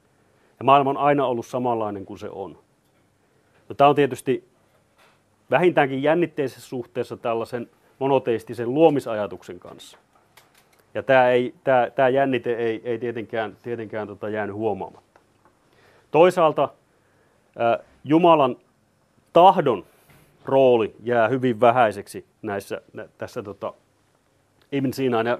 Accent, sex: native, male